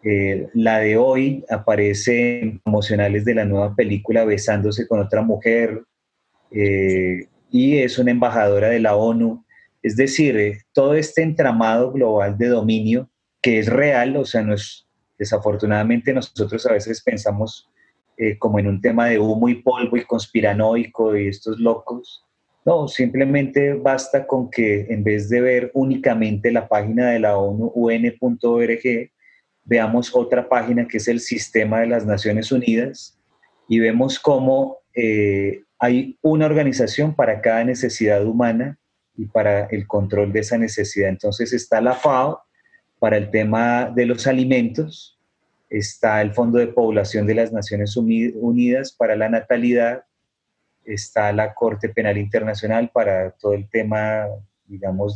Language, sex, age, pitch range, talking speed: English, male, 30-49, 105-125 Hz, 145 wpm